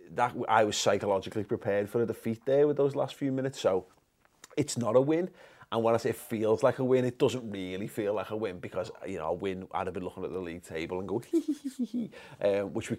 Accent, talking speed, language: British, 245 wpm, English